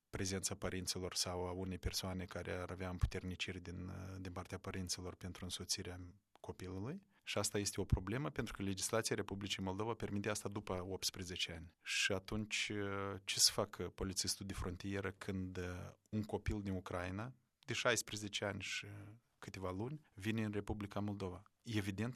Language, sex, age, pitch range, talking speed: Romanian, male, 20-39, 95-110 Hz, 150 wpm